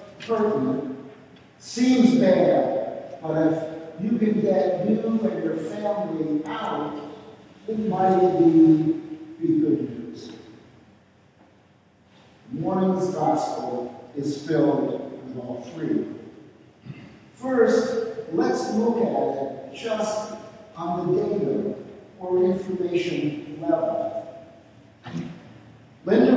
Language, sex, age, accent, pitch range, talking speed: English, male, 50-69, American, 160-235 Hz, 90 wpm